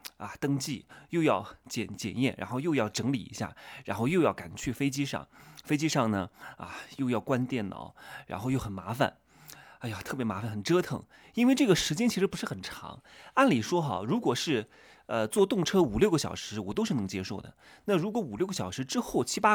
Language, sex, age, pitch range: Chinese, male, 30-49, 110-175 Hz